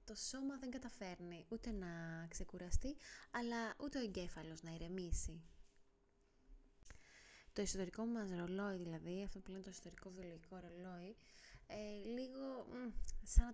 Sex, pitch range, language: female, 180-235 Hz, Greek